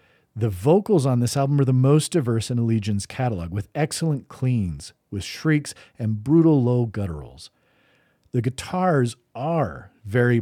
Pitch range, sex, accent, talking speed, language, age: 110-145 Hz, male, American, 145 wpm, English, 40-59